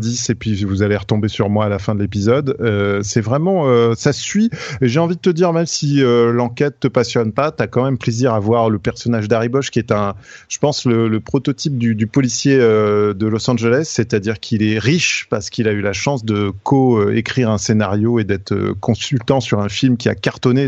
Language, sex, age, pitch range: French, male, 30-49, 105-135 Hz